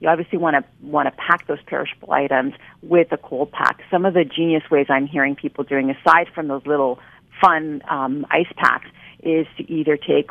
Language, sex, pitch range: English, female, 140-165 Hz